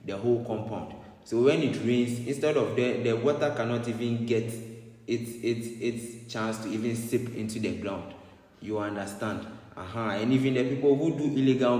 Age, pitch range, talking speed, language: 20-39, 105-120 Hz, 185 wpm, English